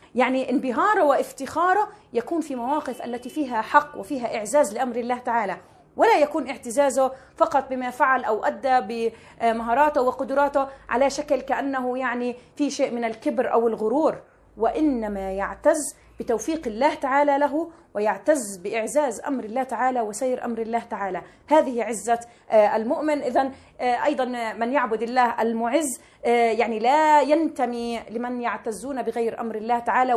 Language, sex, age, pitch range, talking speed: Arabic, female, 30-49, 225-275 Hz, 135 wpm